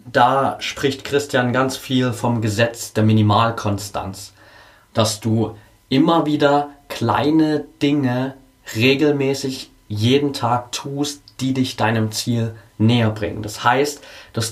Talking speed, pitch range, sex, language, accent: 115 wpm, 110-135 Hz, male, German, German